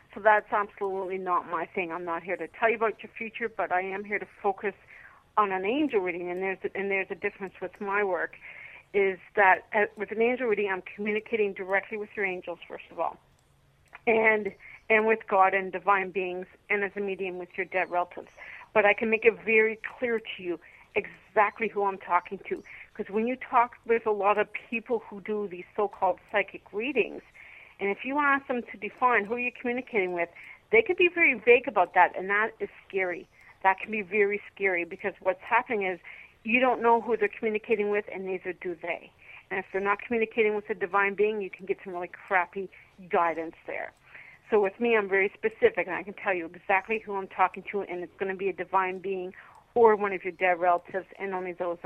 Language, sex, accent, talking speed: English, female, American, 215 wpm